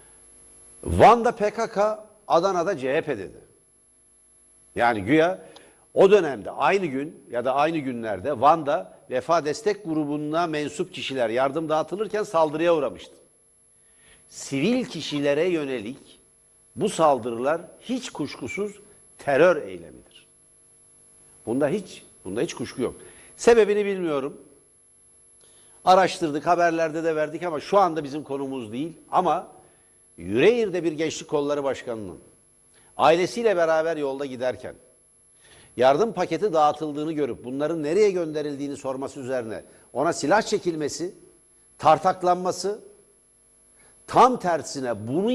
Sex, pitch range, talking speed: male, 150-205 Hz, 105 wpm